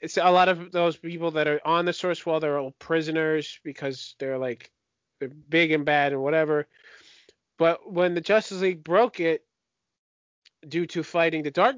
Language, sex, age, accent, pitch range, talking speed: English, male, 20-39, American, 150-185 Hz, 185 wpm